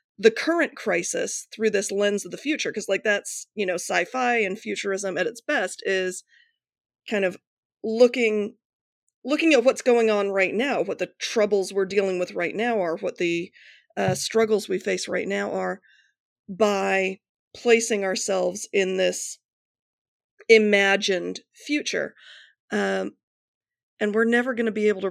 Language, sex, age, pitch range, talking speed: English, female, 30-49, 190-235 Hz, 155 wpm